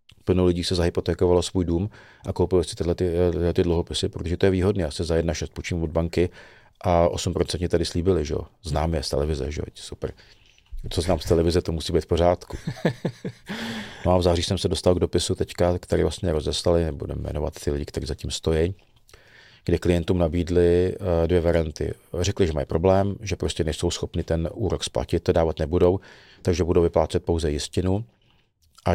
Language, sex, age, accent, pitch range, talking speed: Czech, male, 40-59, native, 85-95 Hz, 190 wpm